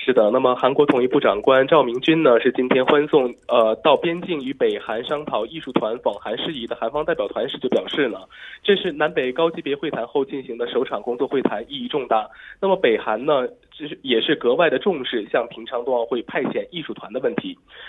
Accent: Chinese